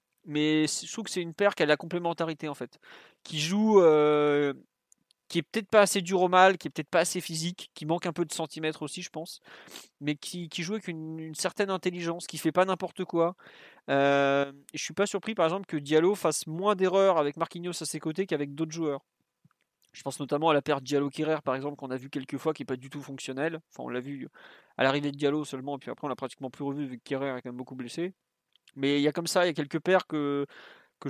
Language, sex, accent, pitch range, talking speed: French, male, French, 135-165 Hz, 255 wpm